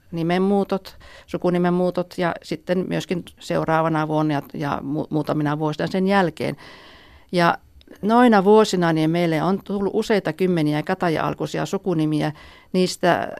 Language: Finnish